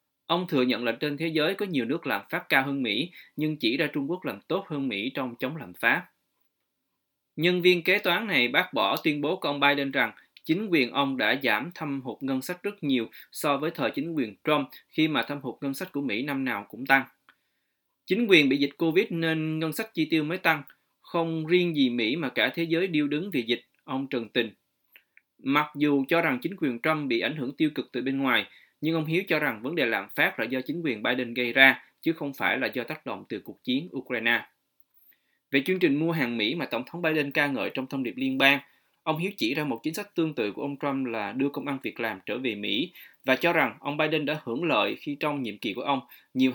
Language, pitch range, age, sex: Vietnamese, 130-160 Hz, 20-39, male